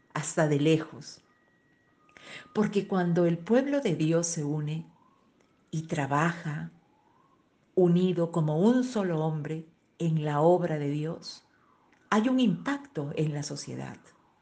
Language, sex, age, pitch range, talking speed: Spanish, female, 50-69, 150-190 Hz, 120 wpm